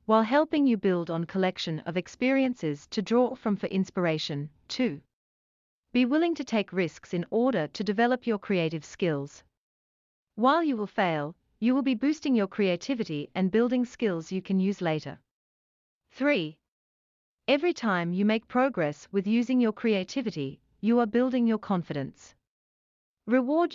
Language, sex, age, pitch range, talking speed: English, female, 40-59, 165-245 Hz, 150 wpm